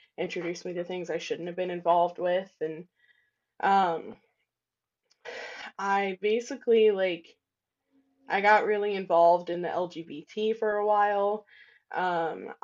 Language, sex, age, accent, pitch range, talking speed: English, female, 10-29, American, 175-215 Hz, 125 wpm